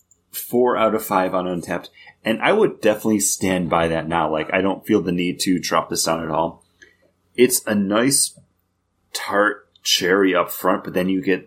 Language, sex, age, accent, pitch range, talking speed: English, male, 30-49, American, 85-95 Hz, 195 wpm